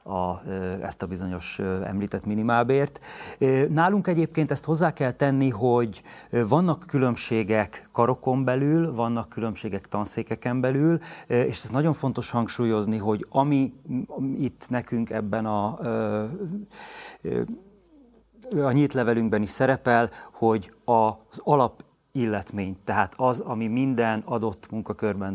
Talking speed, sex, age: 110 wpm, male, 30-49